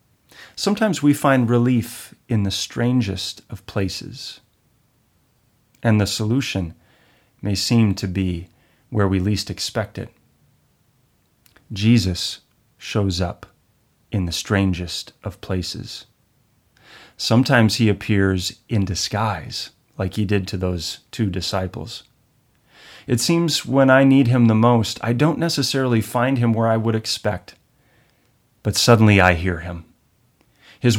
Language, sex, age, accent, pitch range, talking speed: English, male, 30-49, American, 100-125 Hz, 125 wpm